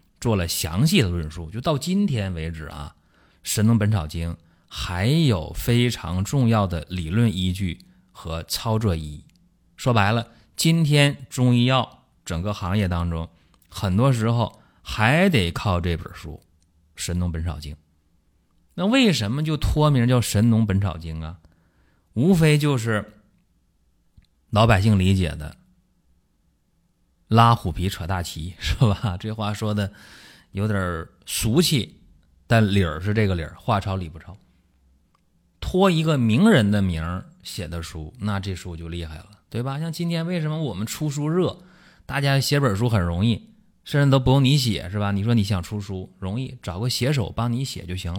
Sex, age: male, 30-49